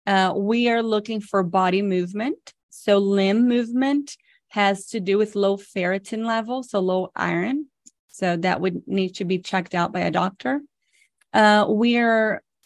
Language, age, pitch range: English, 30-49, 185-220 Hz